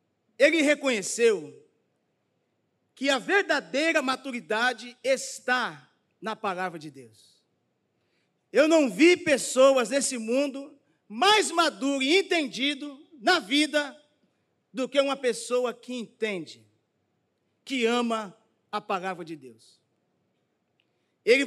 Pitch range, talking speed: 230-295 Hz, 100 wpm